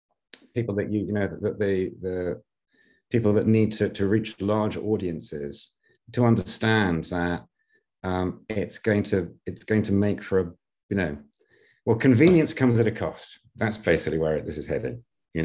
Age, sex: 50-69, male